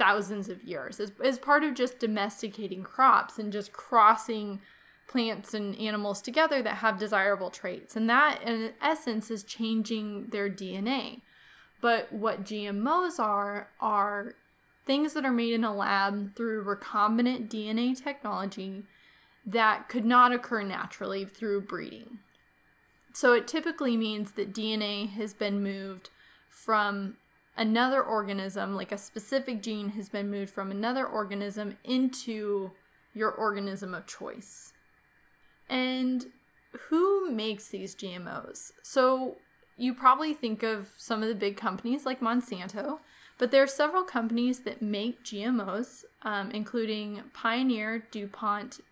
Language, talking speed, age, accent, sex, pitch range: English, 130 wpm, 20-39, American, female, 205-245 Hz